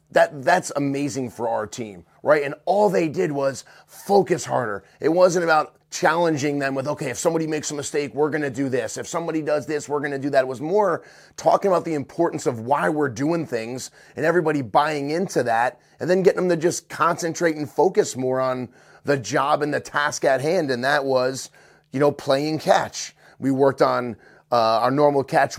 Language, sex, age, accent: English, male, 30-49, American